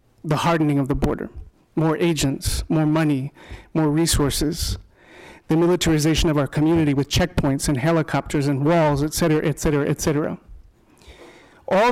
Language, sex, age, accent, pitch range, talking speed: English, male, 40-59, American, 140-165 Hz, 145 wpm